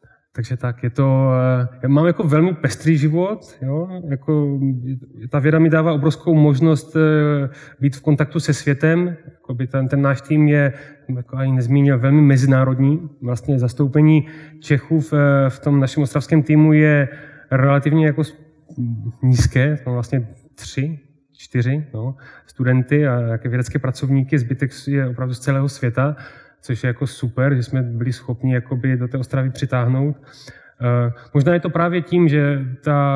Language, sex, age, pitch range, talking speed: Czech, male, 30-49, 120-145 Hz, 145 wpm